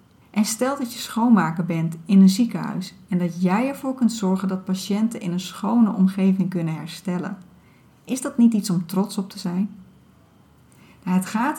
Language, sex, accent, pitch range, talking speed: Dutch, female, Dutch, 185-215 Hz, 180 wpm